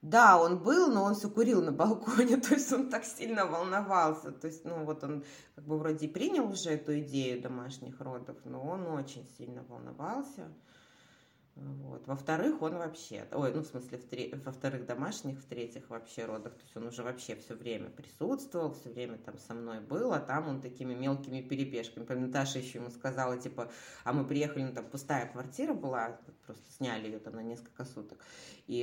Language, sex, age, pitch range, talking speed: Russian, female, 20-39, 125-165 Hz, 185 wpm